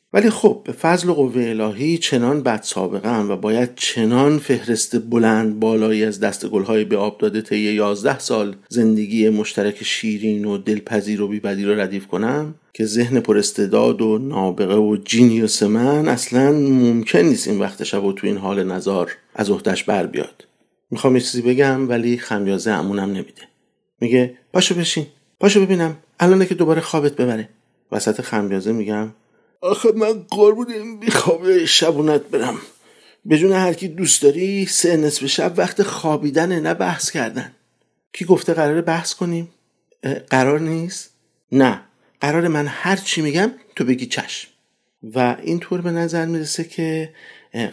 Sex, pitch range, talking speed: male, 110-165 Hz, 150 wpm